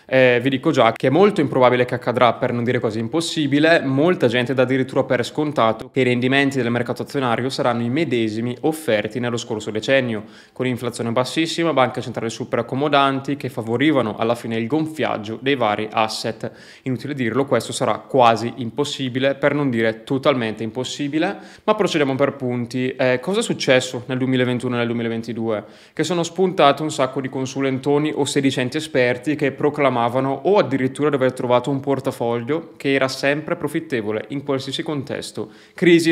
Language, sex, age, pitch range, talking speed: Italian, male, 20-39, 120-145 Hz, 170 wpm